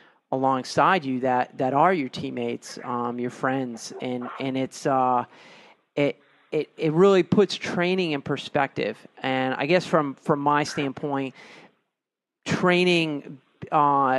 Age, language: 40-59, English